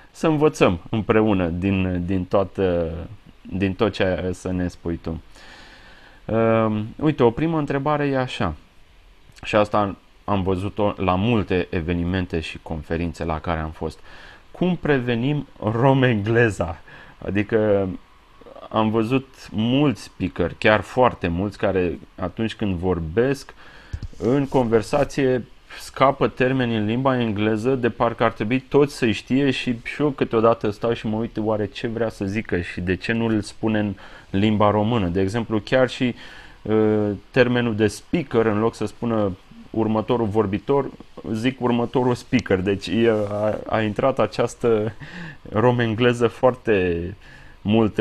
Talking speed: 135 wpm